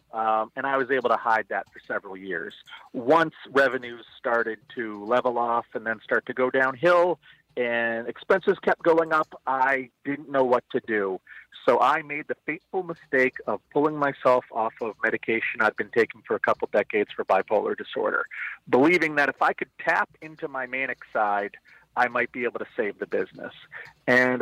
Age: 40-59